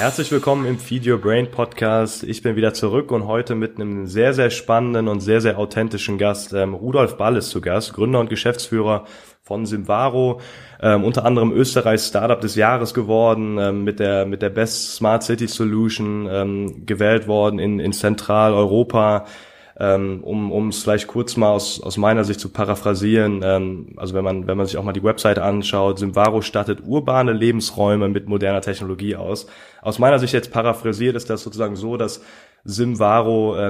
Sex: male